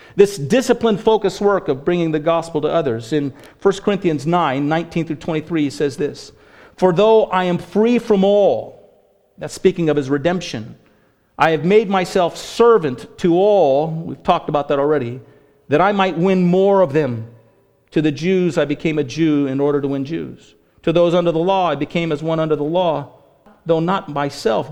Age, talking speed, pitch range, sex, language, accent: 50-69, 185 wpm, 150-195 Hz, male, English, American